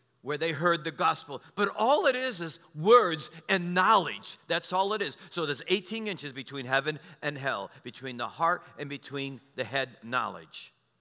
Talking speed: 180 wpm